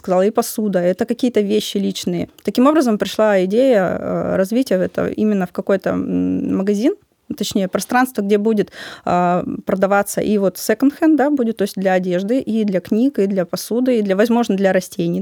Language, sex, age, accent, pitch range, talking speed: Russian, female, 20-39, native, 185-230 Hz, 170 wpm